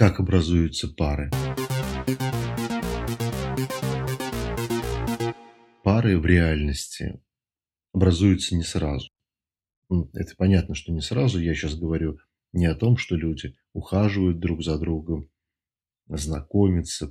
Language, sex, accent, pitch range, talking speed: Russian, male, native, 80-110 Hz, 95 wpm